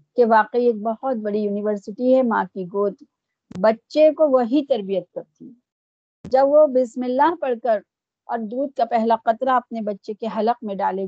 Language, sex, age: Urdu, female, 50-69